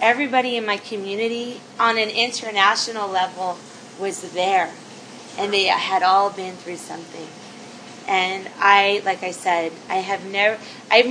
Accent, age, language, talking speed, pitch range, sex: American, 20-39, English, 140 wpm, 190-225 Hz, female